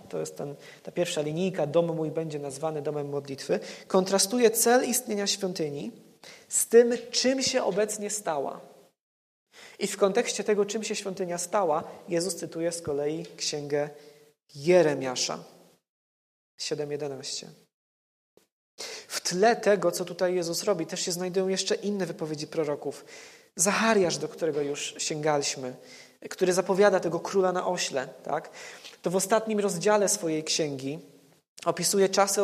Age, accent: 20-39, native